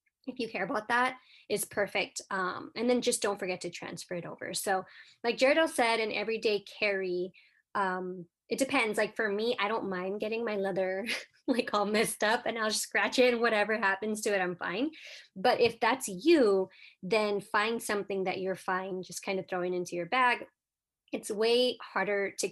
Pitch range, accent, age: 190-235 Hz, American, 20-39